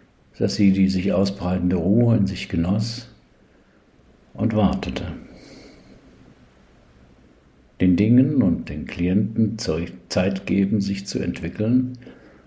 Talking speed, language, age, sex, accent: 100 wpm, German, 60-79, male, German